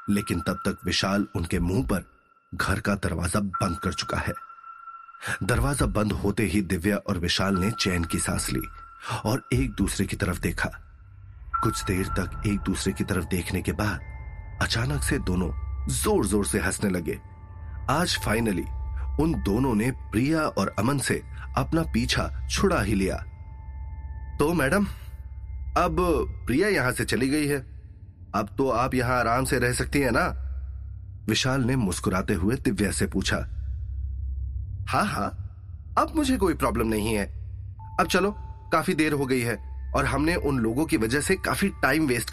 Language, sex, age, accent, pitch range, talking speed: Hindi, male, 30-49, native, 85-110 Hz, 165 wpm